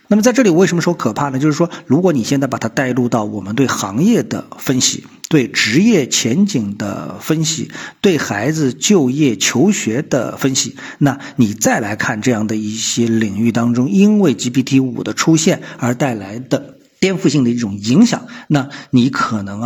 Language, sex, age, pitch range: Chinese, male, 50-69, 120-165 Hz